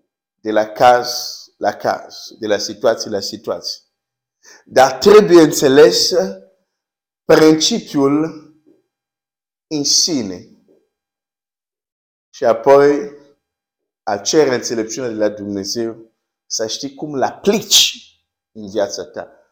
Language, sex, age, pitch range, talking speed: Romanian, male, 50-69, 115-155 Hz, 100 wpm